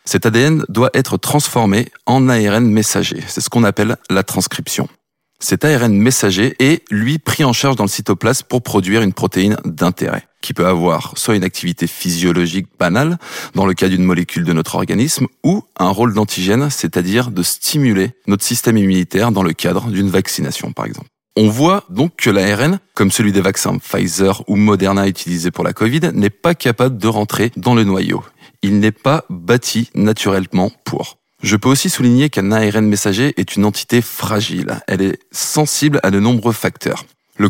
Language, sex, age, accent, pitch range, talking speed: French, male, 20-39, French, 95-125 Hz, 180 wpm